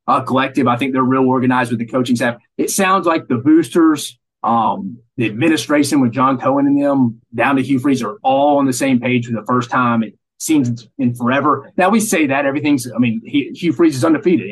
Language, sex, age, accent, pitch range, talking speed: English, male, 30-49, American, 120-165 Hz, 215 wpm